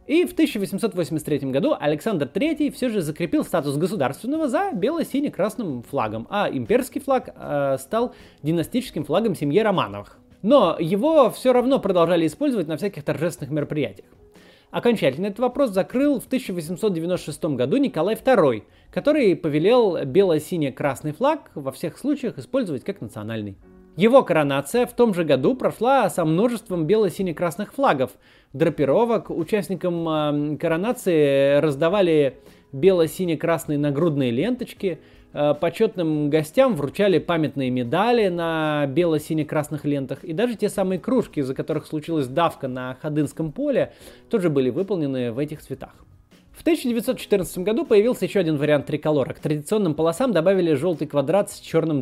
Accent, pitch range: native, 150-220 Hz